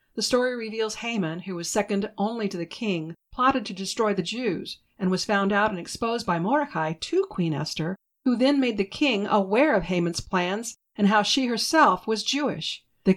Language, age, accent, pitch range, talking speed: English, 50-69, American, 175-230 Hz, 195 wpm